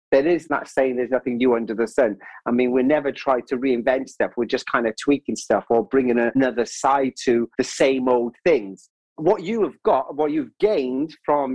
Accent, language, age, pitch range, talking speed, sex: British, English, 40-59, 120-170 Hz, 215 wpm, male